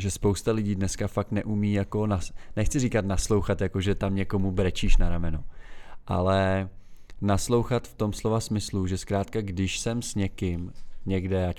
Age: 20-39